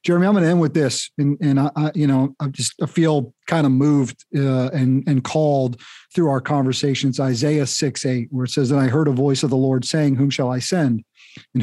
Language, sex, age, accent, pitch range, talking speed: English, male, 40-59, American, 130-165 Hz, 245 wpm